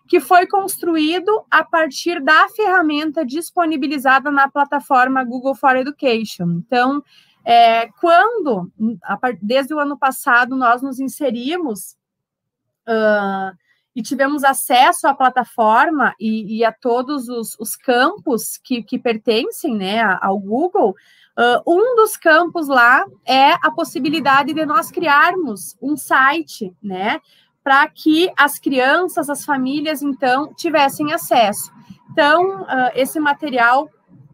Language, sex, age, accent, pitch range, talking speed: Portuguese, female, 30-49, Brazilian, 240-315 Hz, 115 wpm